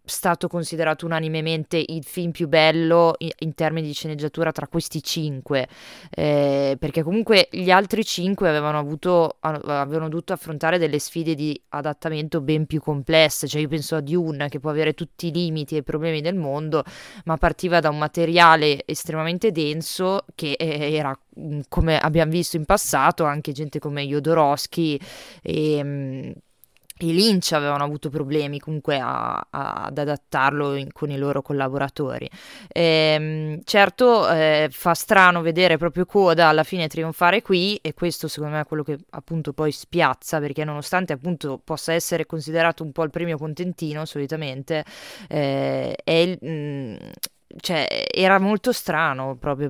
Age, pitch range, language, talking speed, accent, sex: 20-39, 150-175 Hz, Italian, 150 wpm, native, female